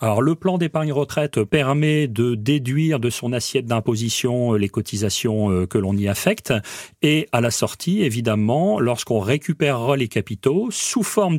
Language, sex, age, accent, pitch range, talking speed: French, male, 40-59, French, 115-165 Hz, 150 wpm